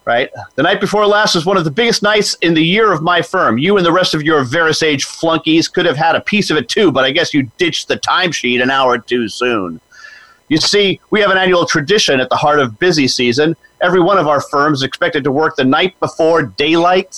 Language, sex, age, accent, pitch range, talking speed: English, male, 40-59, American, 135-185 Hz, 245 wpm